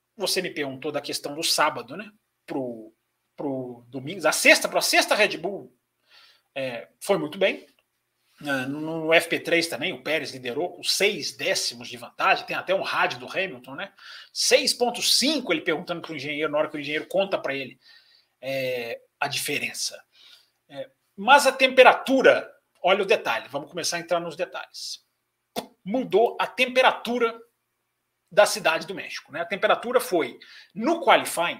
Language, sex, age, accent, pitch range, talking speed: Portuguese, male, 40-59, Brazilian, 155-260 Hz, 160 wpm